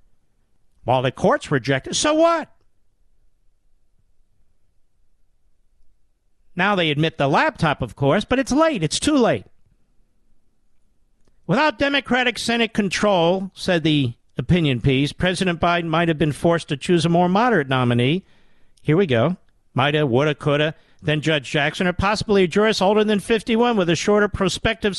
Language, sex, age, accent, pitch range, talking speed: English, male, 50-69, American, 125-190 Hz, 150 wpm